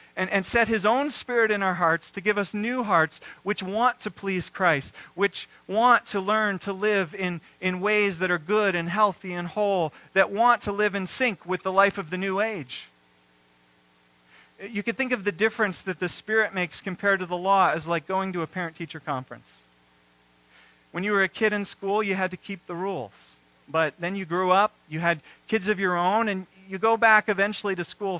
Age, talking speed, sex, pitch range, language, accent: 40-59, 215 wpm, male, 135-210 Hz, English, American